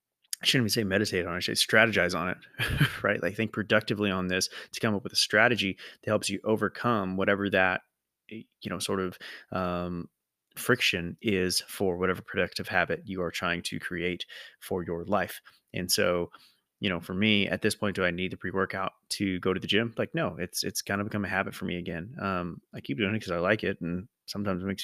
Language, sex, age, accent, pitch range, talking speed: English, male, 20-39, American, 95-110 Hz, 225 wpm